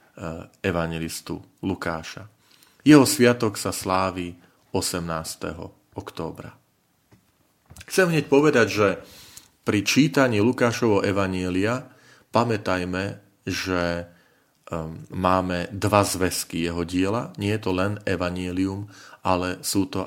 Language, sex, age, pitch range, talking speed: Slovak, male, 40-59, 95-115 Hz, 95 wpm